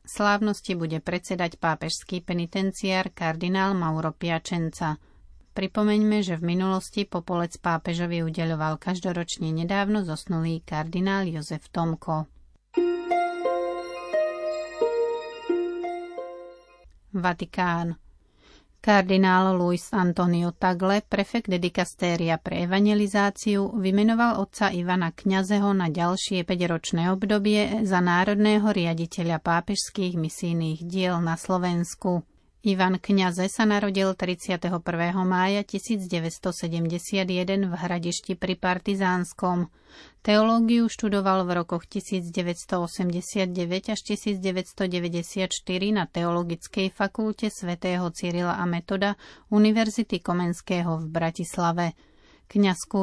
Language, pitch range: Slovak, 175-200 Hz